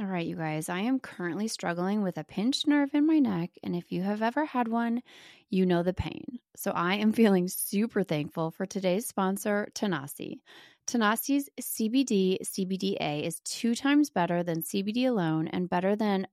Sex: female